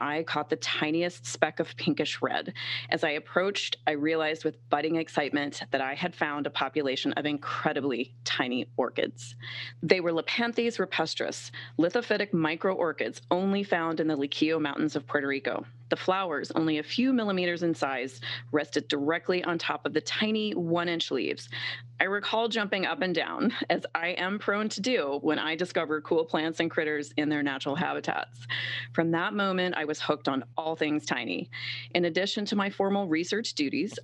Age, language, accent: 30-49, English, American